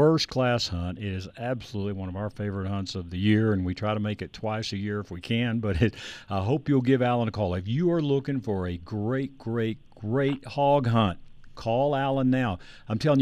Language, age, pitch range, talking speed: English, 60-79, 100-125 Hz, 220 wpm